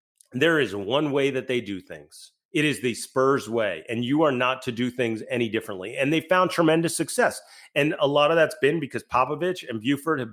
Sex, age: male, 30-49